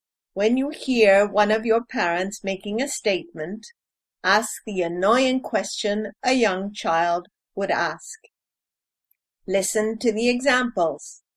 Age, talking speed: 50-69, 120 wpm